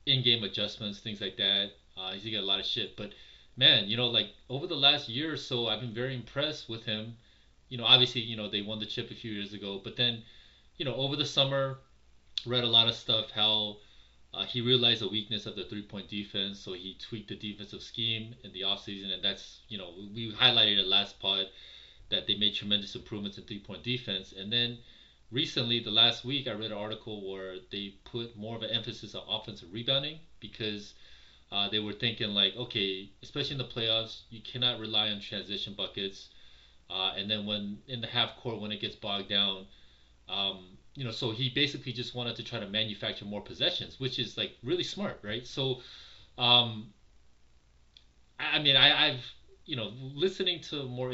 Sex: male